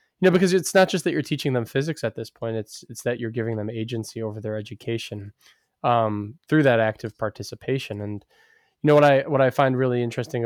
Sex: male